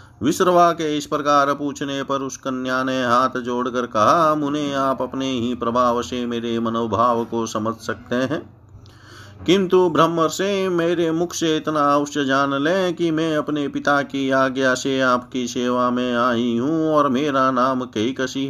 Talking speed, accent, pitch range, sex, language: 160 wpm, native, 125-150 Hz, male, Hindi